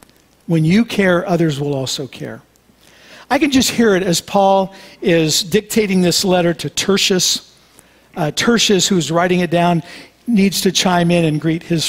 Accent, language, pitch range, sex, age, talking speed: American, English, 150-185 Hz, male, 50-69, 165 wpm